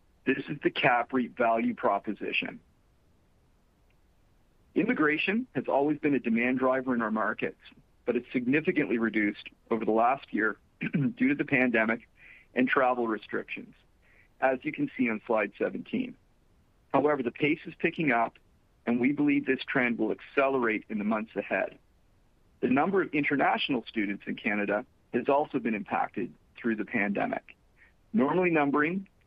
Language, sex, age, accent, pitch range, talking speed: English, male, 40-59, American, 115-145 Hz, 150 wpm